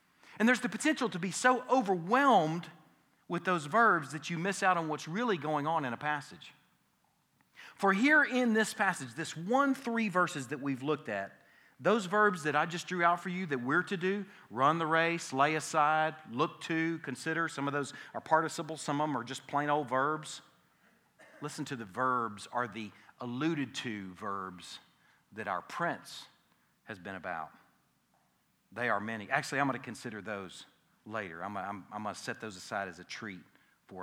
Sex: male